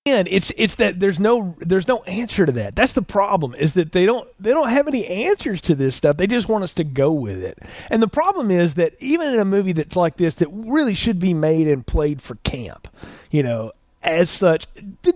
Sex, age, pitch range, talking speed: male, 30-49, 170-230 Hz, 240 wpm